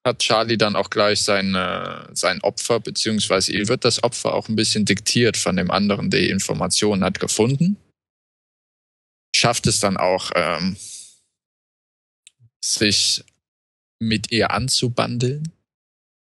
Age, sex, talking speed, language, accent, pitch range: 20-39, male, 125 wpm, German, German, 100-120 Hz